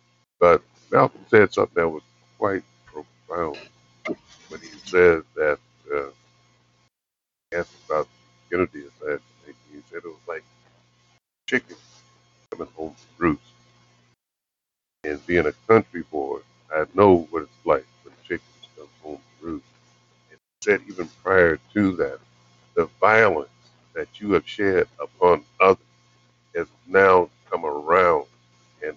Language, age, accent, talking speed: English, 50-69, American, 130 wpm